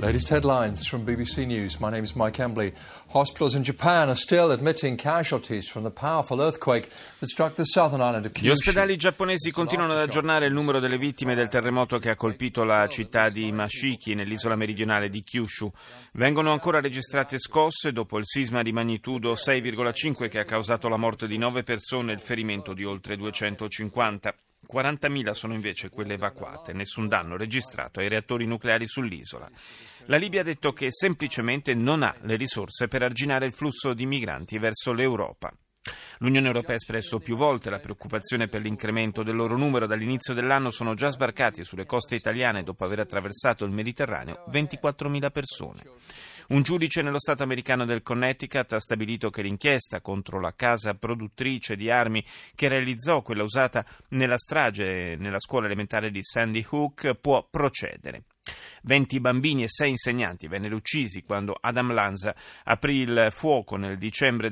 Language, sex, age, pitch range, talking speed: Italian, male, 30-49, 110-135 Hz, 140 wpm